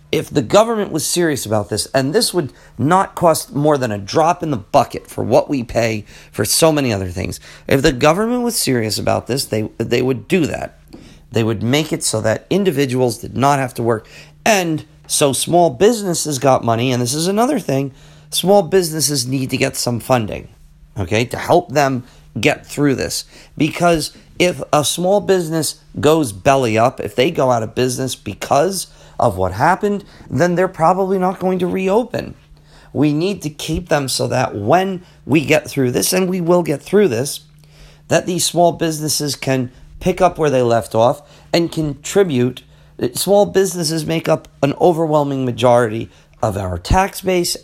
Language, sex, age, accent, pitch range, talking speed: English, male, 40-59, American, 125-170 Hz, 180 wpm